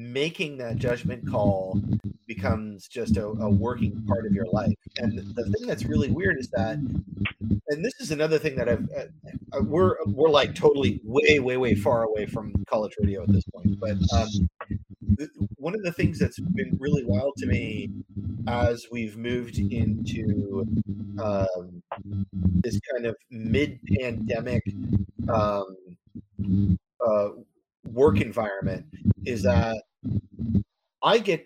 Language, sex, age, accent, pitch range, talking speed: English, male, 30-49, American, 100-120 Hz, 145 wpm